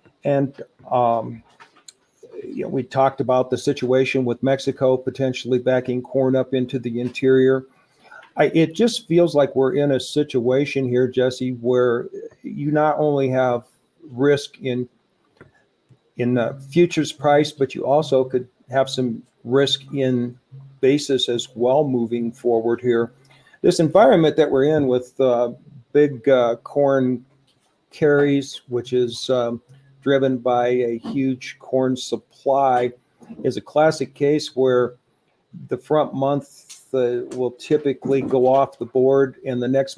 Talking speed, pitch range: 130 wpm, 125-135 Hz